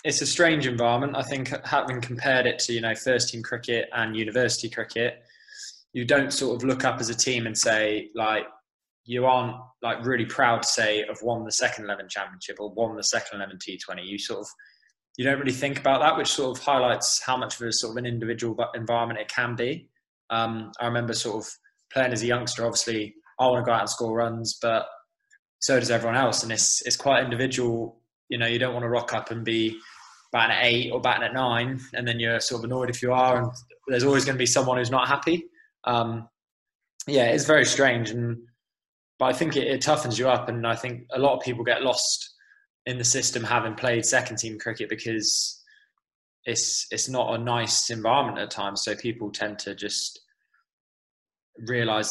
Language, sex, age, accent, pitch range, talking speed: English, male, 20-39, British, 115-130 Hz, 210 wpm